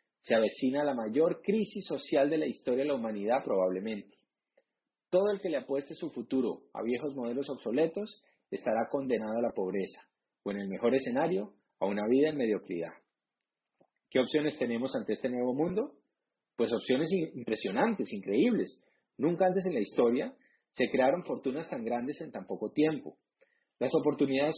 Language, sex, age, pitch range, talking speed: Spanish, male, 40-59, 120-180 Hz, 160 wpm